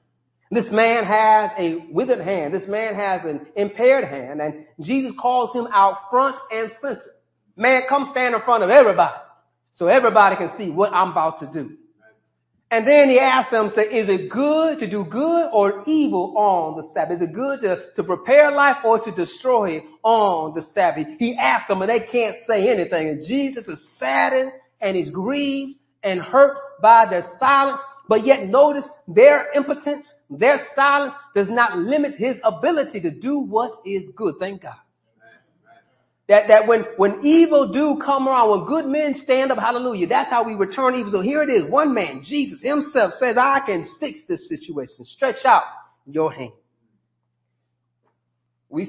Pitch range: 180-275 Hz